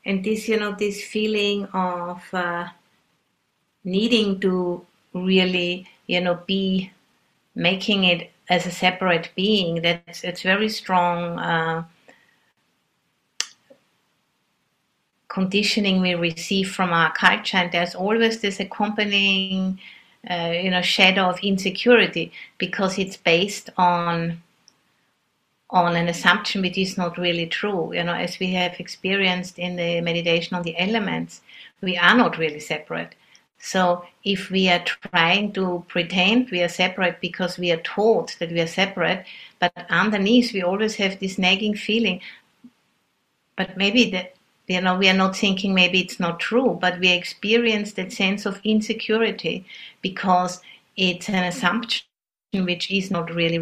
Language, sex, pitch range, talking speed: English, female, 175-205 Hz, 140 wpm